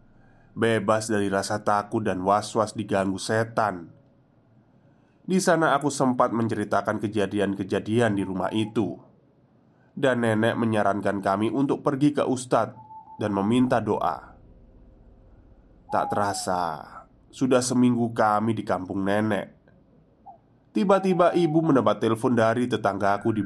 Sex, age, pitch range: male, 20-39, 110-150 Hz